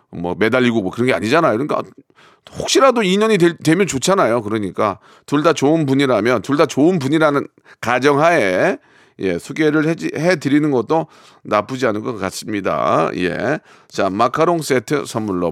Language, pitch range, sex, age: Korean, 110-165 Hz, male, 40-59